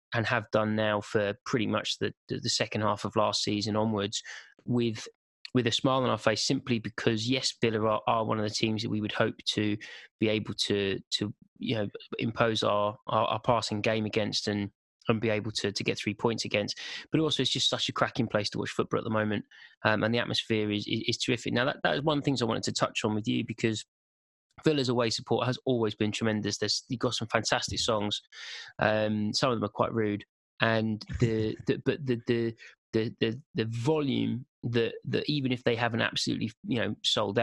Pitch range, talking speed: 105-120 Hz, 220 wpm